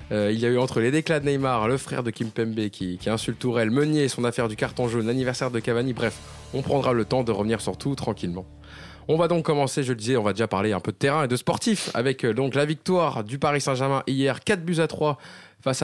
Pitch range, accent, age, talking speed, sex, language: 115-145 Hz, French, 20-39, 270 wpm, male, French